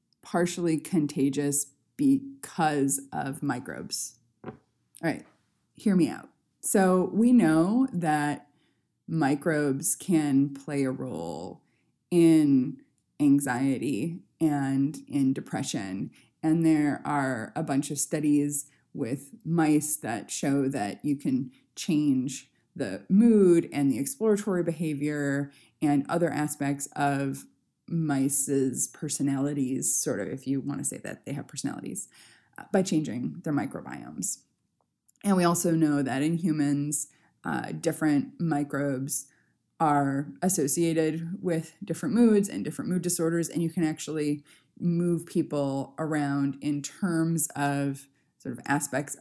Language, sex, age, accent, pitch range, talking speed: English, female, 20-39, American, 140-170 Hz, 120 wpm